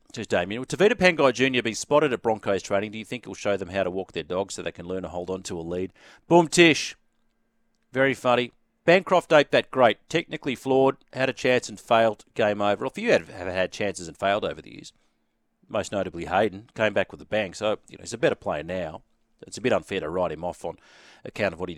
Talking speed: 240 wpm